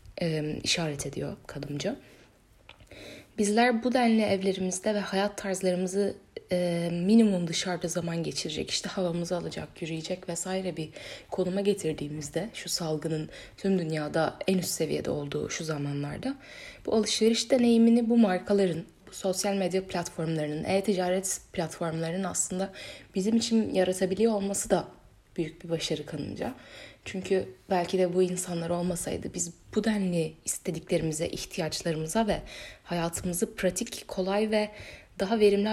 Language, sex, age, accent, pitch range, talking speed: Turkish, female, 10-29, native, 165-200 Hz, 120 wpm